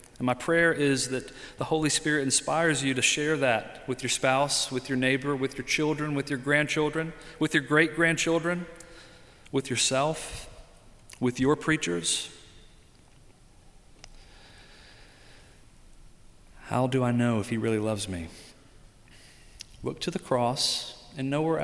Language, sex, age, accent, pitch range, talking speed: English, male, 40-59, American, 110-135 Hz, 135 wpm